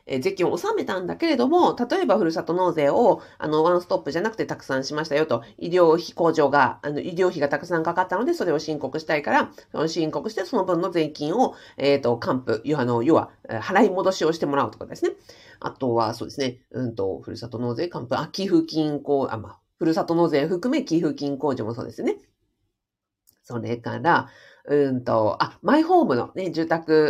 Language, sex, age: Japanese, female, 40-59